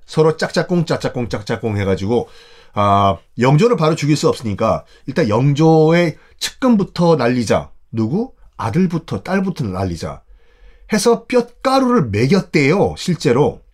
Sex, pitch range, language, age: male, 115-175 Hz, Korean, 30-49